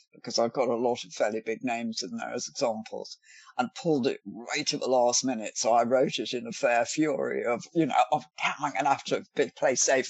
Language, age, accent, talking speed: English, 60-79, British, 240 wpm